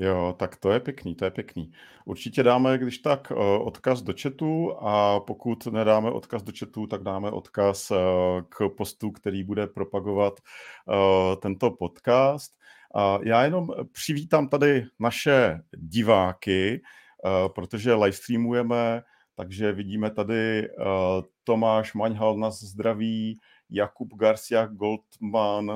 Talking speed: 115 wpm